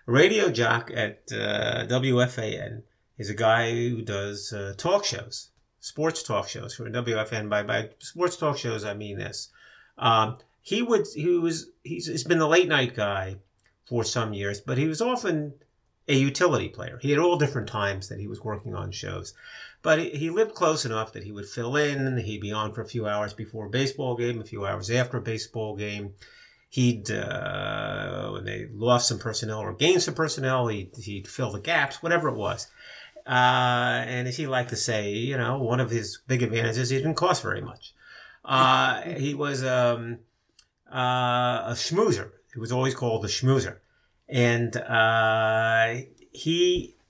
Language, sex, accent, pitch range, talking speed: English, male, American, 110-140 Hz, 175 wpm